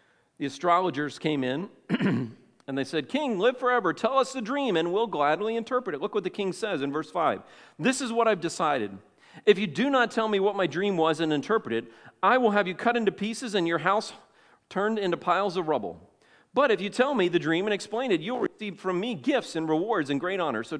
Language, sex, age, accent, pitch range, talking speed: English, male, 40-59, American, 145-210 Hz, 235 wpm